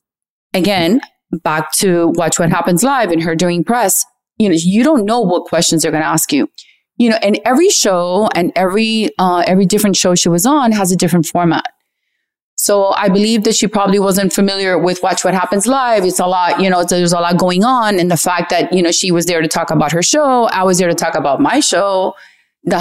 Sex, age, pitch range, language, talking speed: female, 30-49, 165-205 Hz, English, 230 wpm